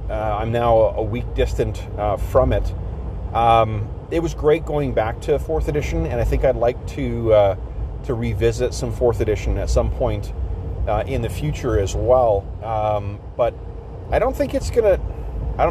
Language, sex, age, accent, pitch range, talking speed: English, male, 30-49, American, 95-115 Hz, 180 wpm